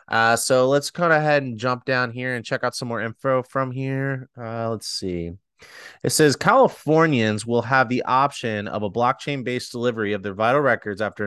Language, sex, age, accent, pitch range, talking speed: English, male, 30-49, American, 110-135 Hz, 195 wpm